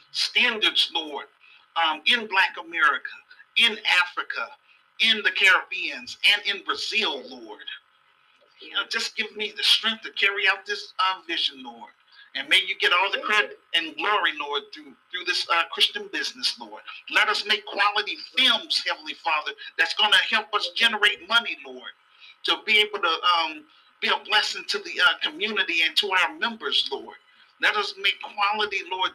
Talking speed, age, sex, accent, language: 170 wpm, 40-59, male, American, English